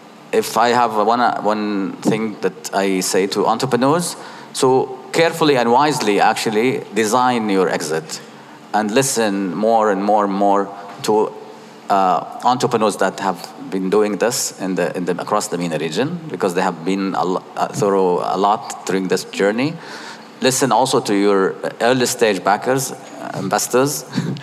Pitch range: 95-120 Hz